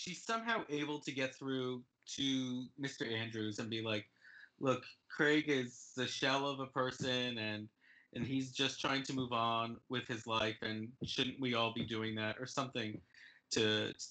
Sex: male